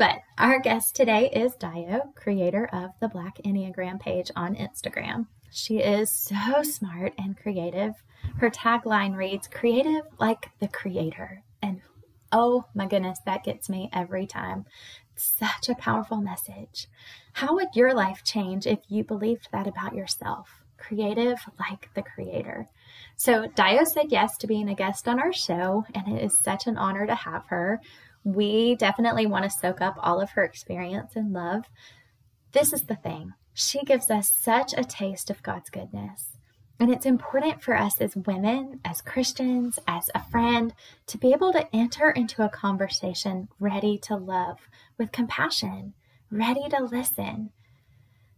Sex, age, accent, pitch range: female, 20-39, American, 185-235 Hz